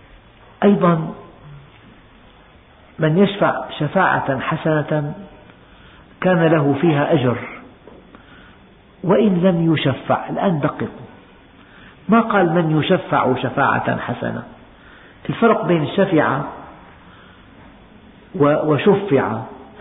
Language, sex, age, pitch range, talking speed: Arabic, male, 50-69, 135-185 Hz, 75 wpm